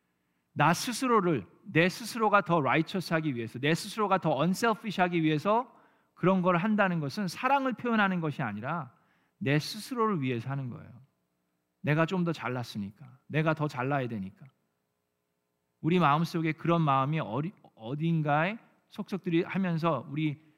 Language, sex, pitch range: Korean, male, 130-175 Hz